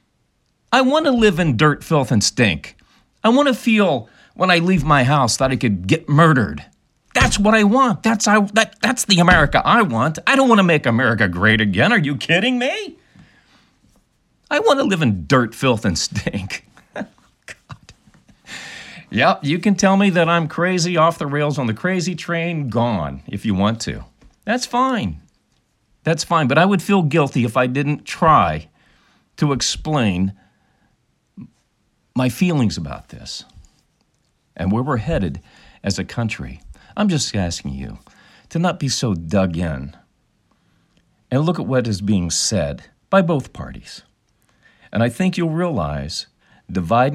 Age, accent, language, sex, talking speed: 40-59, American, English, male, 165 wpm